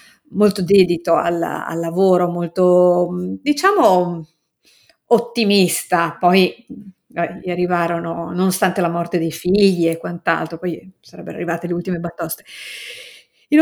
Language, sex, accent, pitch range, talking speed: Italian, female, native, 170-210 Hz, 110 wpm